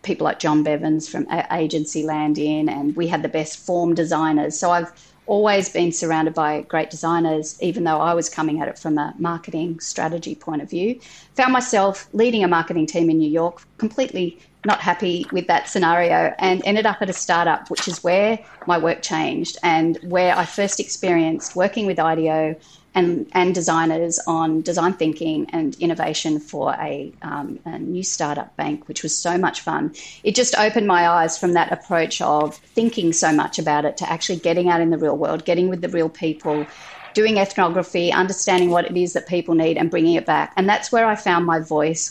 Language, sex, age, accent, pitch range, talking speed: English, female, 30-49, Australian, 160-185 Hz, 200 wpm